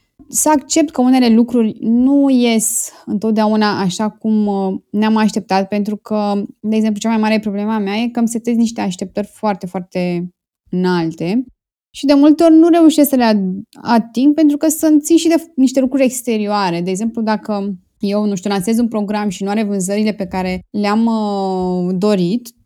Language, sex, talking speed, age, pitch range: Romanian, female, 170 wpm, 20-39, 200-245 Hz